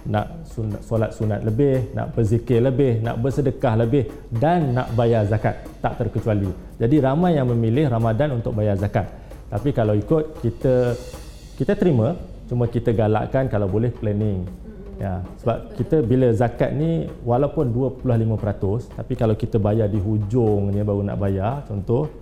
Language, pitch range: Malay, 110-135 Hz